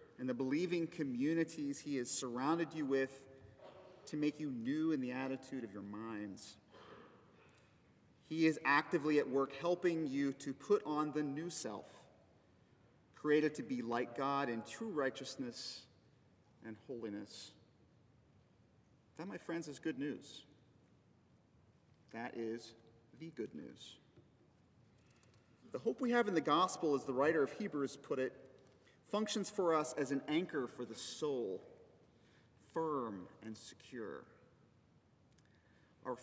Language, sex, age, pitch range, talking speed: English, male, 40-59, 115-160 Hz, 135 wpm